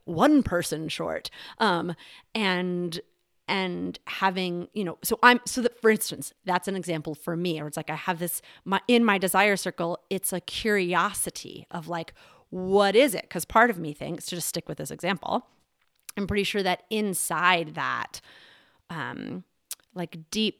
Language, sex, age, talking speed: English, female, 30-49, 170 wpm